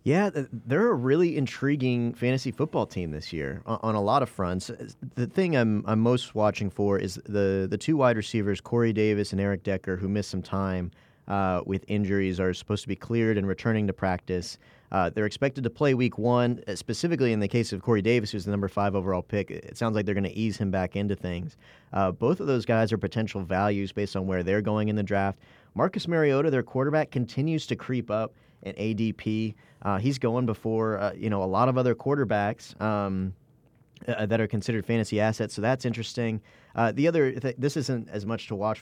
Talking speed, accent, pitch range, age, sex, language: 210 wpm, American, 100-120 Hz, 30-49, male, English